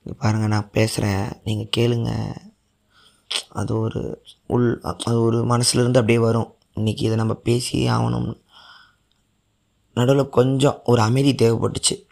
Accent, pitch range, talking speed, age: native, 105-125 Hz, 120 wpm, 20-39